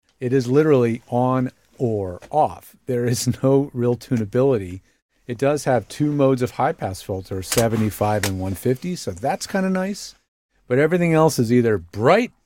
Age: 40-59